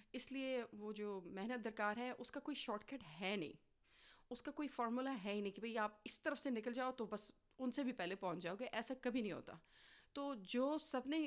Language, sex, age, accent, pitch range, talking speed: English, female, 30-49, Indian, 190-245 Hz, 210 wpm